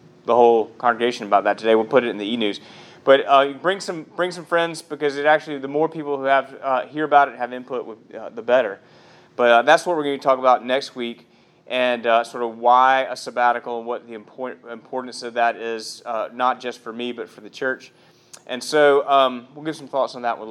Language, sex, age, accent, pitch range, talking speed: English, male, 30-49, American, 120-155 Hz, 240 wpm